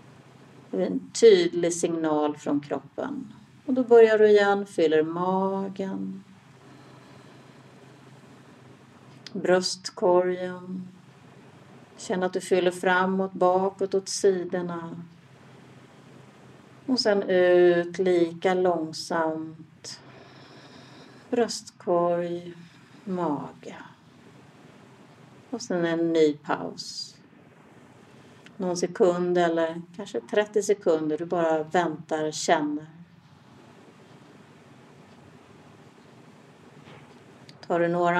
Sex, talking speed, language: female, 75 wpm, Swedish